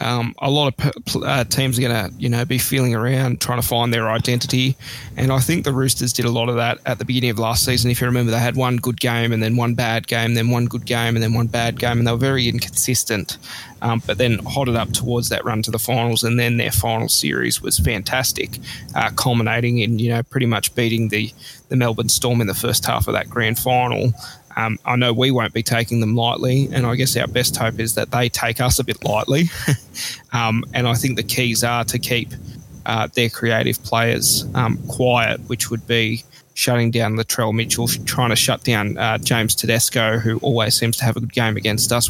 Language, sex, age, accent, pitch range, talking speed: English, male, 20-39, Australian, 115-125 Hz, 235 wpm